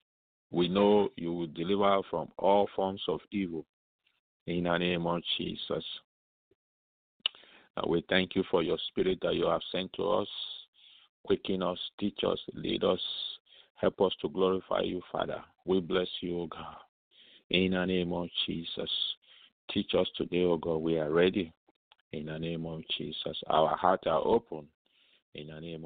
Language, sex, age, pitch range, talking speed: English, male, 50-69, 80-100 Hz, 160 wpm